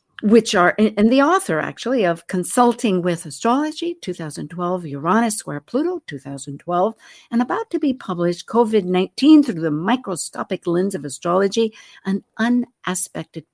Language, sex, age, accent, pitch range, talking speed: English, female, 60-79, American, 175-240 Hz, 130 wpm